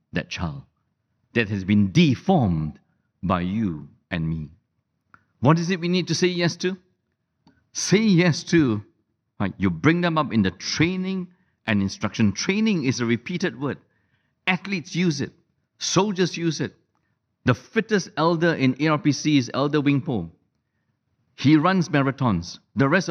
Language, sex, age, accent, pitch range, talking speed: English, male, 60-79, Malaysian, 115-185 Hz, 145 wpm